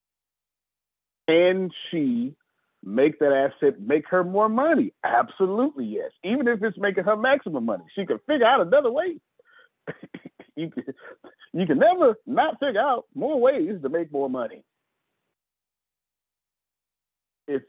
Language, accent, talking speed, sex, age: English, American, 130 wpm, male, 40-59